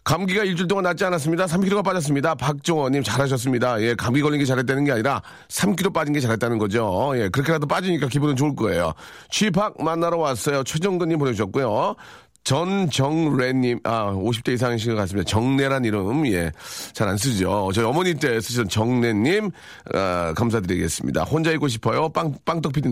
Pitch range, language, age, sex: 105-155 Hz, Korean, 40-59, male